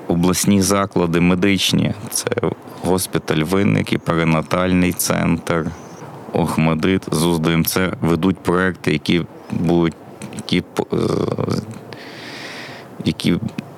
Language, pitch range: Ukrainian, 80-90 Hz